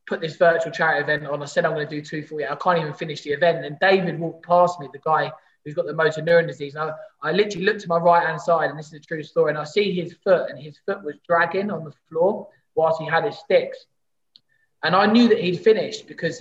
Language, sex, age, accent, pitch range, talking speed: English, male, 20-39, British, 155-180 Hz, 275 wpm